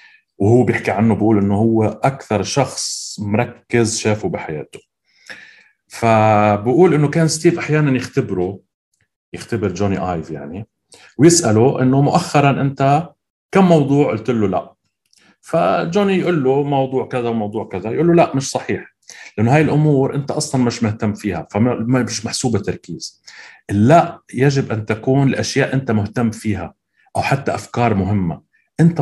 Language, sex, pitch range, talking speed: Arabic, male, 105-140 Hz, 135 wpm